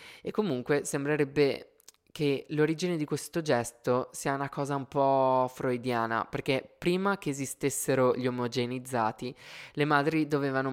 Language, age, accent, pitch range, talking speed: Italian, 20-39, native, 125-150 Hz, 130 wpm